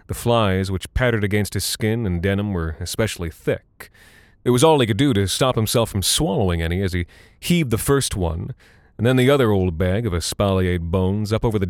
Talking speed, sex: 215 wpm, male